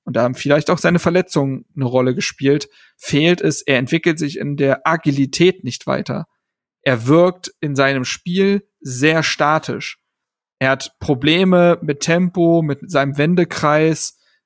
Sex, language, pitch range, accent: male, German, 145-165 Hz, German